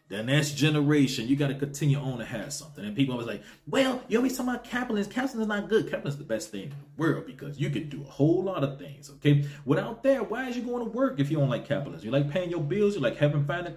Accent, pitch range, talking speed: American, 140-195 Hz, 290 wpm